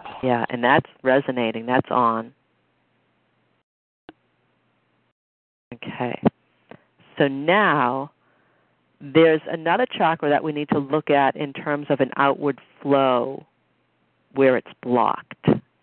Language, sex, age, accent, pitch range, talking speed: English, female, 50-69, American, 125-170 Hz, 100 wpm